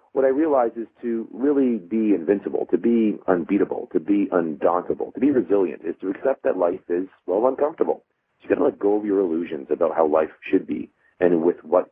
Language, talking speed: English, 205 wpm